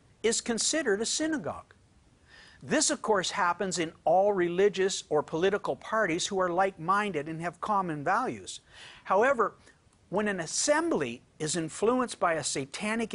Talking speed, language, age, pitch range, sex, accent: 135 wpm, English, 60-79, 155-220 Hz, male, American